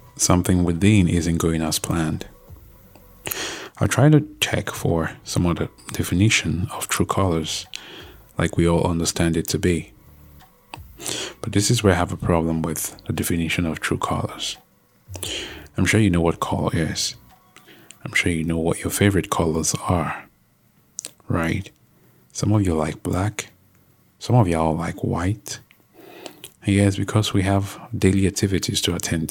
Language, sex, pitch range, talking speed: English, male, 85-105 Hz, 150 wpm